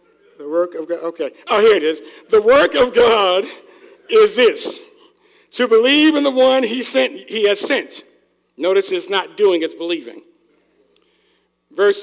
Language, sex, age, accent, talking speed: English, male, 60-79, American, 160 wpm